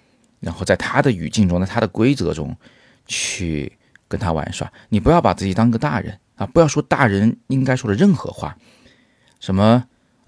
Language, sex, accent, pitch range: Chinese, male, native, 95-150 Hz